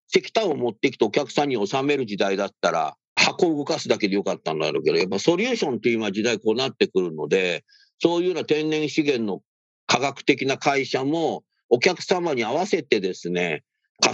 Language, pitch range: Japanese, 115-185 Hz